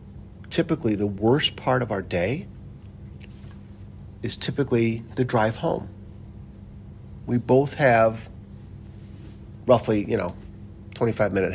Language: English